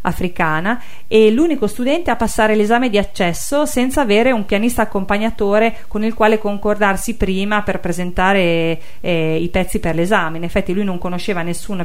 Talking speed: 160 wpm